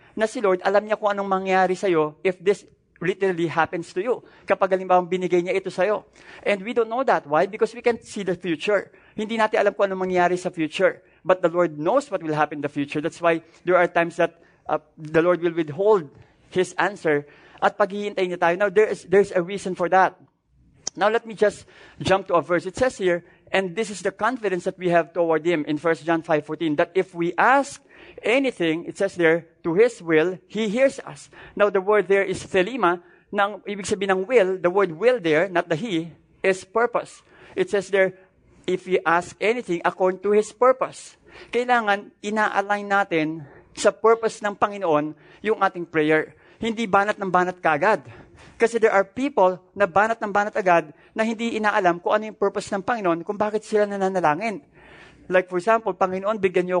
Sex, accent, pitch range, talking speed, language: male, Filipino, 170-210 Hz, 200 wpm, English